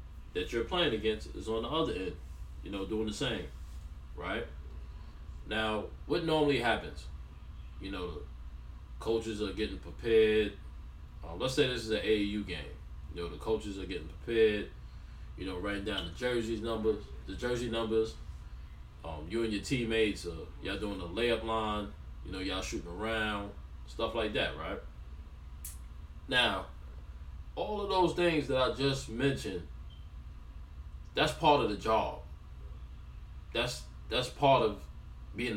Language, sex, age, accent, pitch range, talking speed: English, male, 20-39, American, 70-110 Hz, 155 wpm